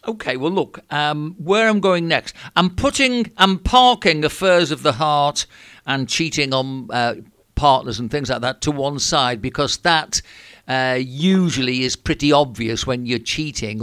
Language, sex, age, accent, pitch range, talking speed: English, male, 50-69, British, 125-150 Hz, 165 wpm